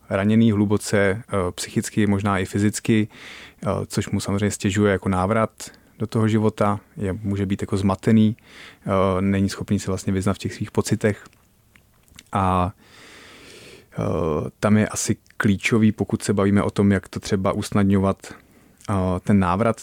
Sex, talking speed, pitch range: male, 135 wpm, 95-105 Hz